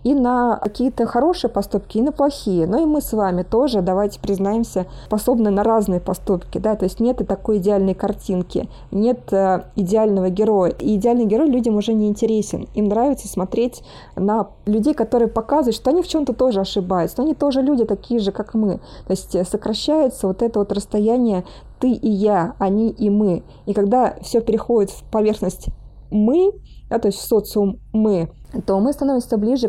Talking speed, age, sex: 180 wpm, 20-39, female